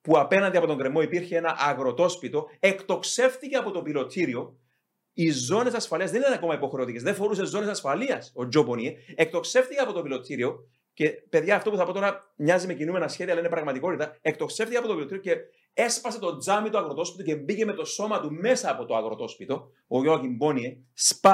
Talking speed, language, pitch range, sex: 190 wpm, Greek, 145-205 Hz, male